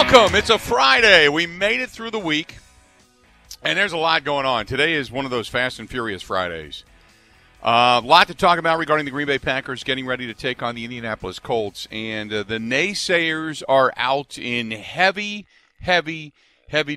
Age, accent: 40-59, American